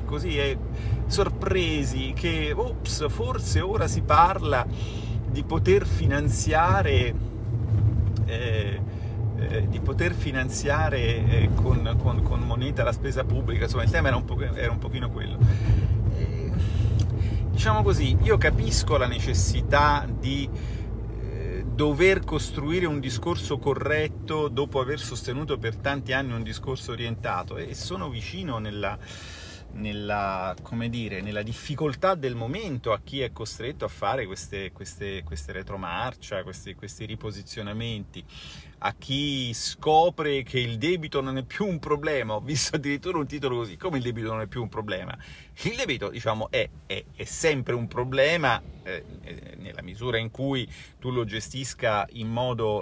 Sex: male